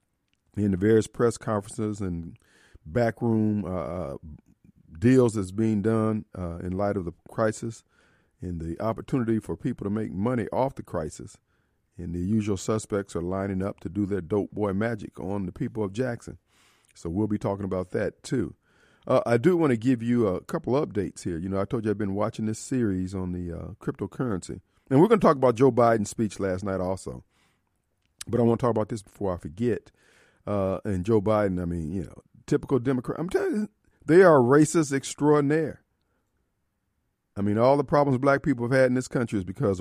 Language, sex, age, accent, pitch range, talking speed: English, male, 40-59, American, 95-120 Hz, 195 wpm